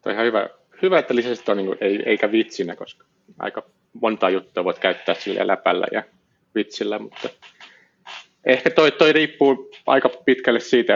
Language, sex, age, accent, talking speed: Finnish, male, 30-49, native, 155 wpm